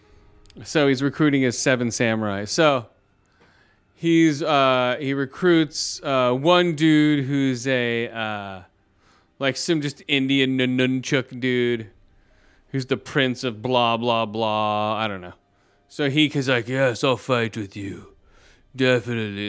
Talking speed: 130 wpm